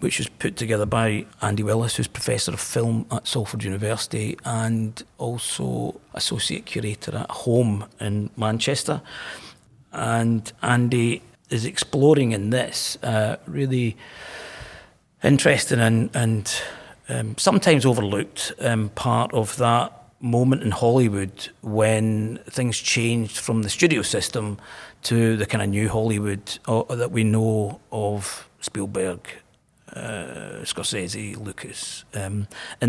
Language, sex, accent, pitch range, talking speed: English, male, British, 110-125 Hz, 120 wpm